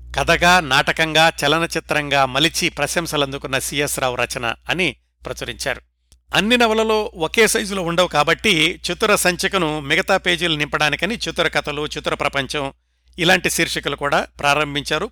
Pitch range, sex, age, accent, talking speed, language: 135-175 Hz, male, 60-79, native, 120 wpm, Telugu